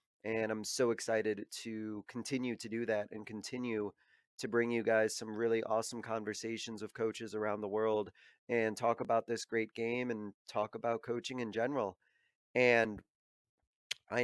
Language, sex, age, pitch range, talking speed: English, male, 30-49, 110-125 Hz, 160 wpm